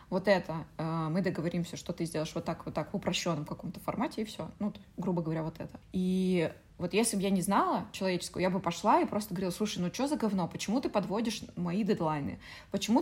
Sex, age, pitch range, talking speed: female, 20-39, 170-200 Hz, 215 wpm